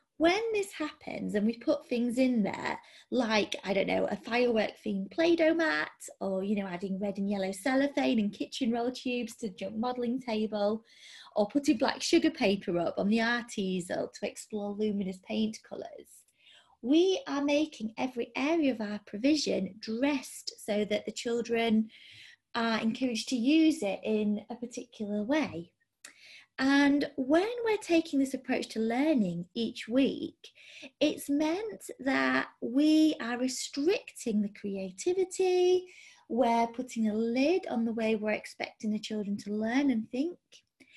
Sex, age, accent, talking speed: female, 20-39, British, 155 wpm